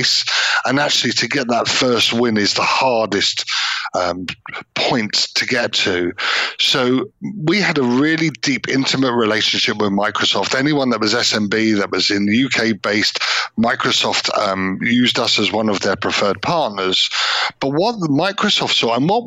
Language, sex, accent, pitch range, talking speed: English, male, British, 100-130 Hz, 160 wpm